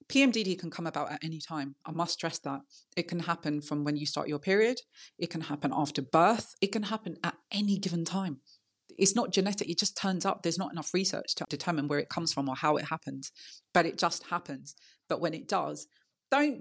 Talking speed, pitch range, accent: 225 wpm, 150-180 Hz, British